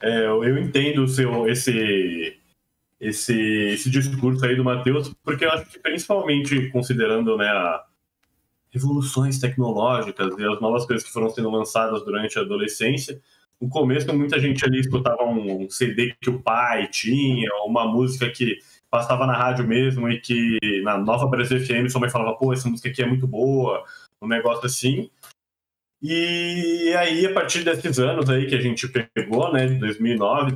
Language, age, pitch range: Portuguese, 20-39, 115-155 Hz